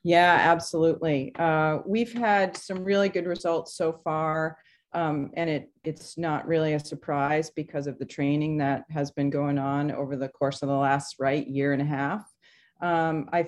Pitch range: 145-165 Hz